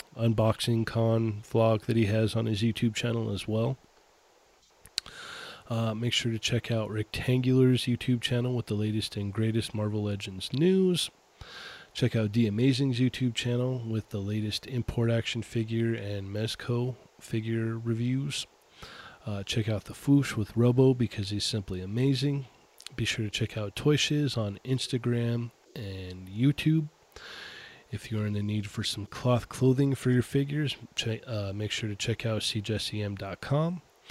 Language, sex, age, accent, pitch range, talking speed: English, male, 20-39, American, 110-130 Hz, 150 wpm